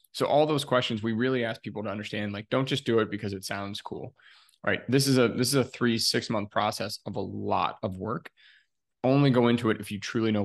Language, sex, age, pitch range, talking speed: English, male, 20-39, 105-115 Hz, 255 wpm